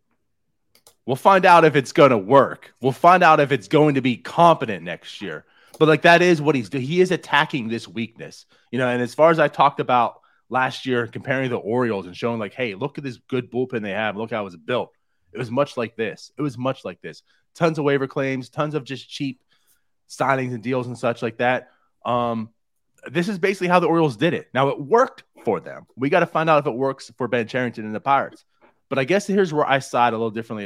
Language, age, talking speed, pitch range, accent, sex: English, 30-49, 245 wpm, 120-150 Hz, American, male